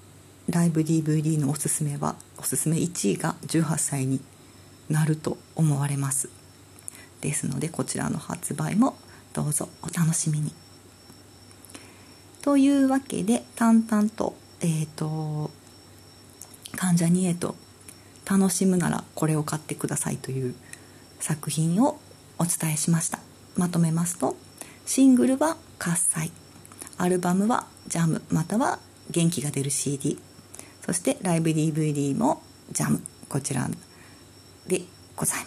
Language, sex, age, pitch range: Japanese, female, 40-59, 145-185 Hz